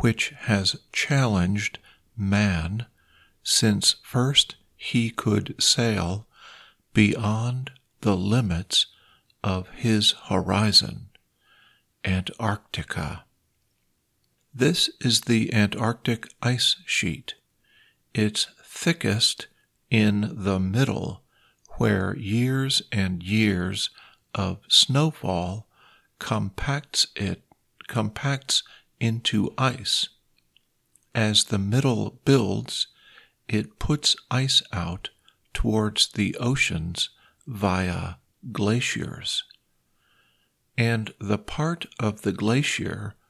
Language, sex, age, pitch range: Thai, male, 50-69, 100-125 Hz